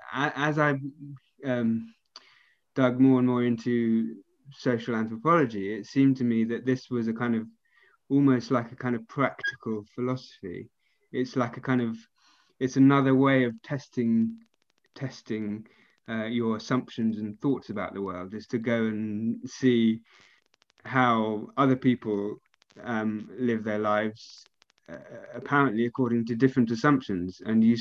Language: English